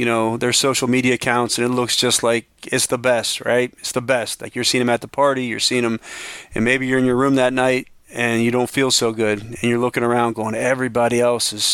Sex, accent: male, American